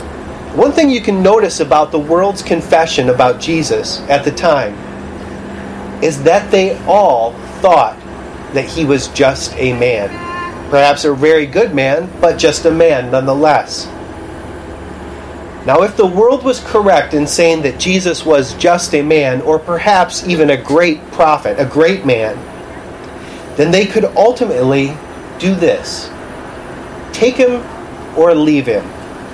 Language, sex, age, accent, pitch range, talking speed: English, male, 30-49, American, 140-200 Hz, 140 wpm